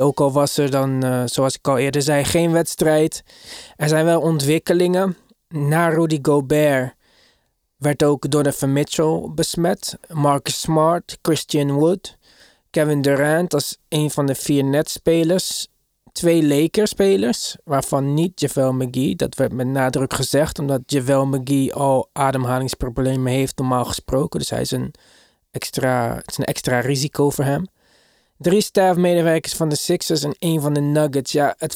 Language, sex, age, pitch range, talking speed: Dutch, male, 20-39, 135-165 Hz, 150 wpm